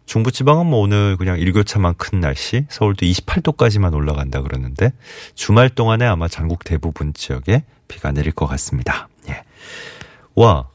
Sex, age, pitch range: male, 40-59, 80-115 Hz